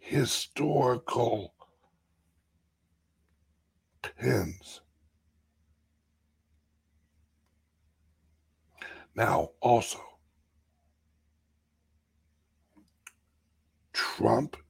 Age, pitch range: 60-79, 75-100 Hz